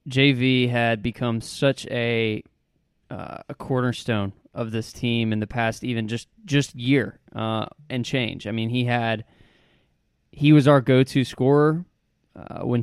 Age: 20-39